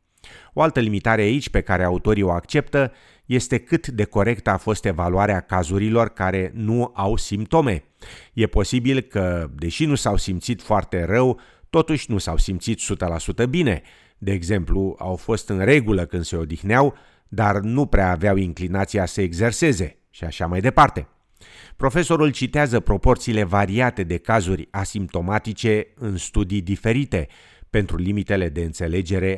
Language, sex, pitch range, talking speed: Romanian, male, 90-115 Hz, 145 wpm